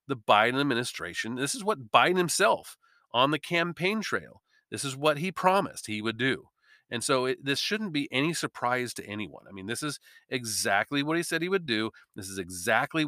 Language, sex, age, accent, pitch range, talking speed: English, male, 40-59, American, 110-170 Hz, 195 wpm